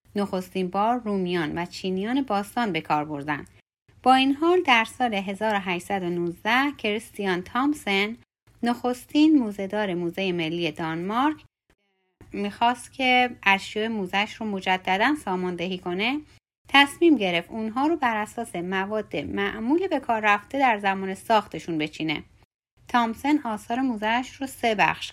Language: Persian